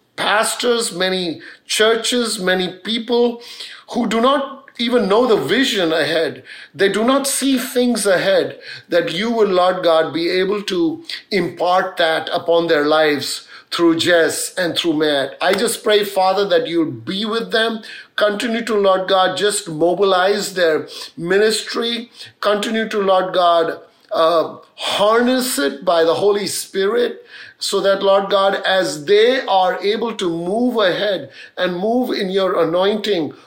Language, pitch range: English, 170-225 Hz